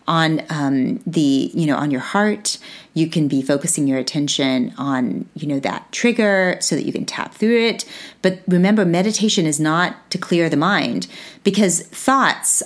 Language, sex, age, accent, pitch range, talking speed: English, female, 30-49, American, 150-200 Hz, 175 wpm